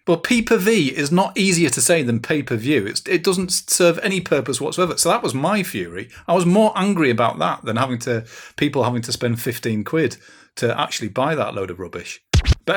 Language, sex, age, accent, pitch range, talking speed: English, male, 40-59, British, 100-125 Hz, 205 wpm